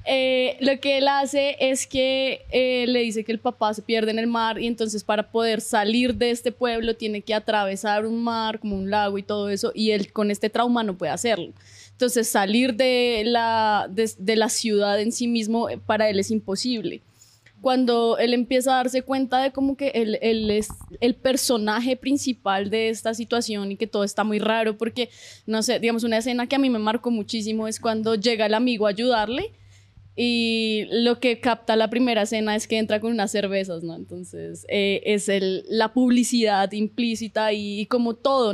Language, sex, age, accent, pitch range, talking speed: Spanish, female, 20-39, Colombian, 210-250 Hz, 200 wpm